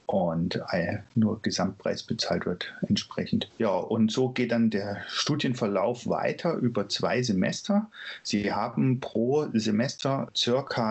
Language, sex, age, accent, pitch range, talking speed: German, male, 40-59, German, 105-120 Hz, 120 wpm